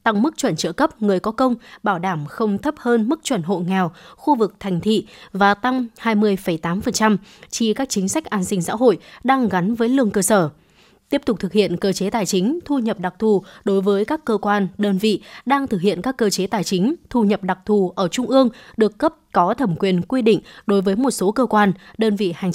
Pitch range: 195-240 Hz